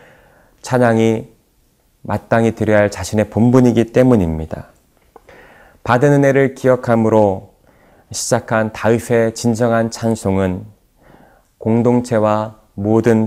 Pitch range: 100-120 Hz